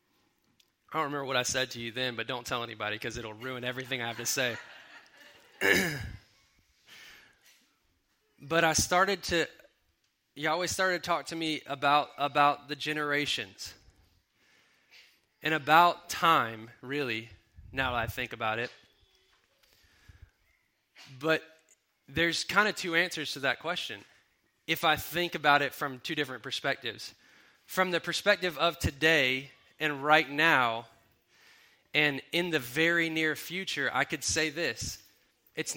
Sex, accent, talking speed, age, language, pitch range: male, American, 140 wpm, 20-39, English, 130-165 Hz